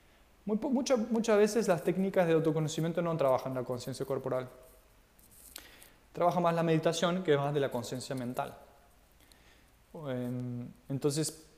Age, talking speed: 20-39, 120 wpm